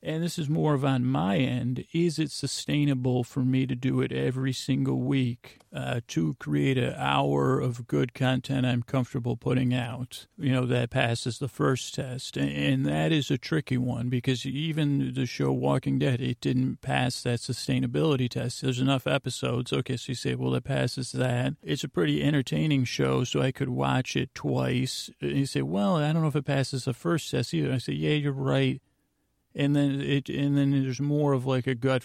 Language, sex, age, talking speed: English, male, 40-59, 205 wpm